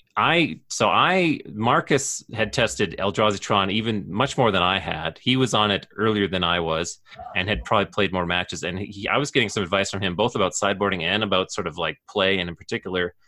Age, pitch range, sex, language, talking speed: 30-49, 95-120 Hz, male, English, 220 wpm